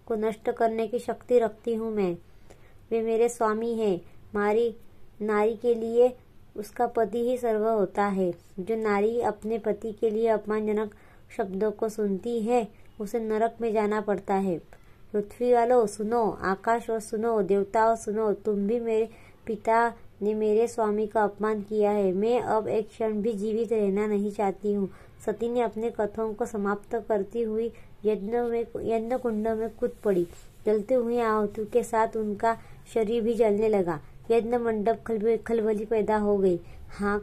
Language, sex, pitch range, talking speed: Hindi, male, 205-230 Hz, 160 wpm